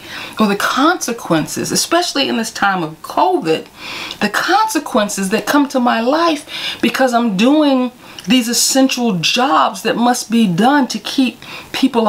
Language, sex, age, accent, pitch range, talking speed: English, female, 40-59, American, 180-255 Hz, 145 wpm